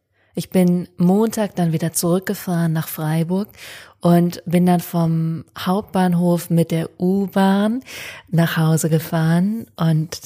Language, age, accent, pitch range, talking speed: German, 20-39, German, 170-220 Hz, 115 wpm